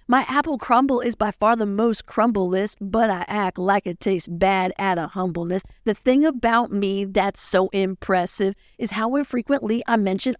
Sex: female